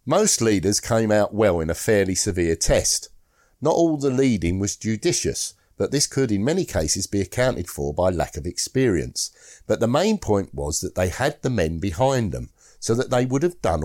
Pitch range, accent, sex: 95-130 Hz, British, male